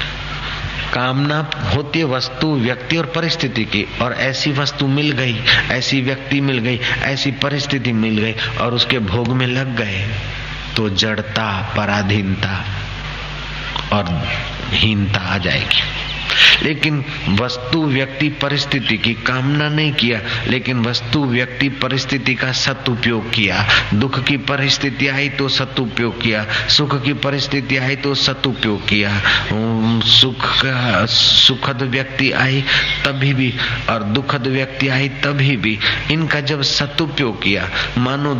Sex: male